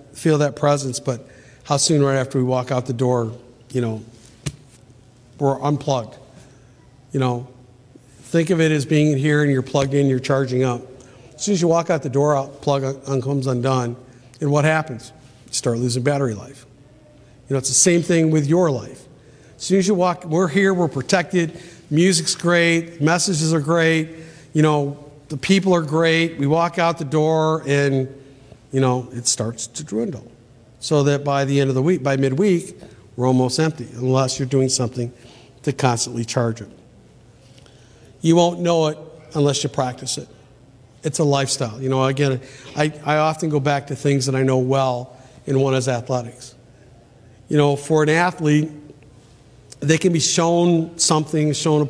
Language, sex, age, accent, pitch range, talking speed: English, male, 50-69, American, 130-155 Hz, 180 wpm